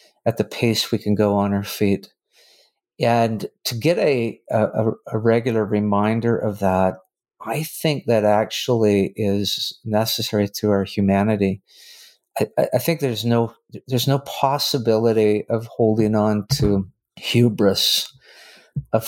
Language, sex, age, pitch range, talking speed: English, male, 50-69, 100-120 Hz, 130 wpm